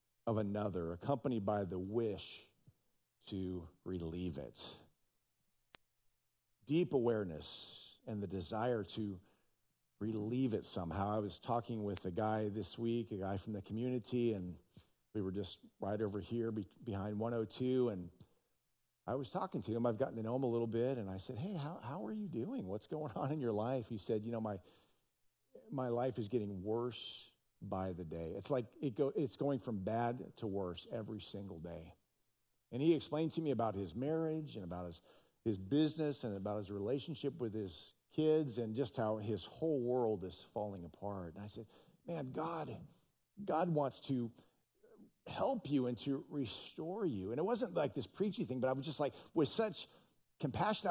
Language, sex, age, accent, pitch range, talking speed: English, male, 50-69, American, 100-135 Hz, 180 wpm